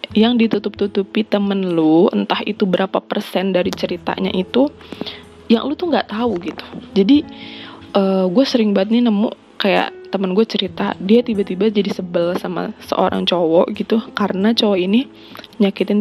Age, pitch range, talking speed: 20-39, 185-225 Hz, 150 wpm